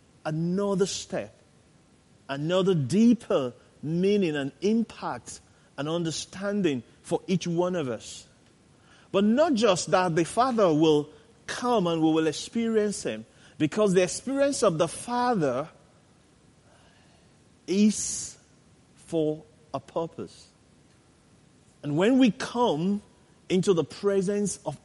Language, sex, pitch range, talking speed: English, male, 145-200 Hz, 110 wpm